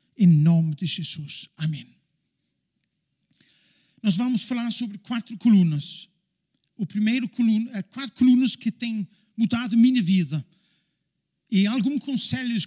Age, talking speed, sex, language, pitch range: 50-69, 120 wpm, male, Portuguese, 185-240 Hz